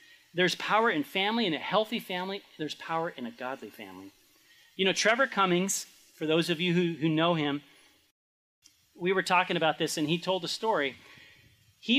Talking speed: 185 wpm